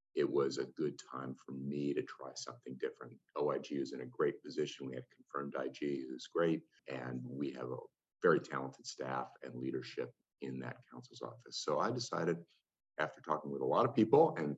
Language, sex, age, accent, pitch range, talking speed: English, male, 50-69, American, 65-85 Hz, 195 wpm